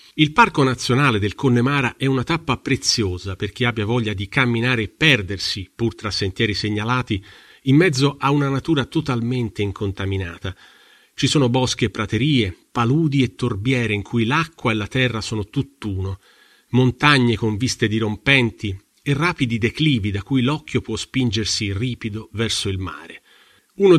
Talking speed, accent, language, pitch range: 155 wpm, native, Italian, 105-135 Hz